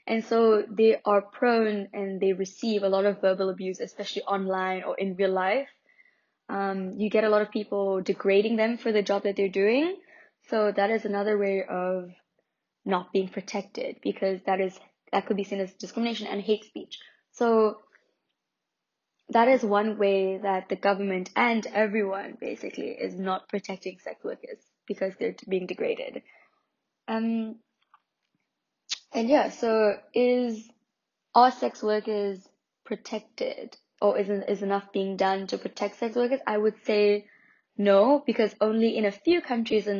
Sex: female